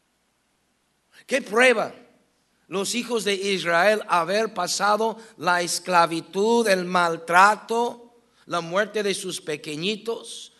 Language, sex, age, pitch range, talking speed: English, male, 60-79, 185-240 Hz, 95 wpm